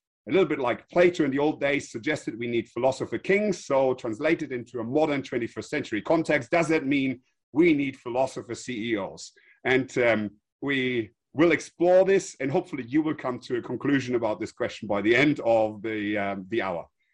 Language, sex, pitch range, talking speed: English, male, 125-180 Hz, 190 wpm